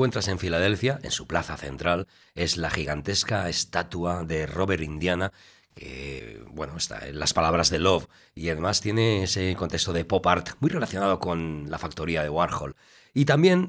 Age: 40-59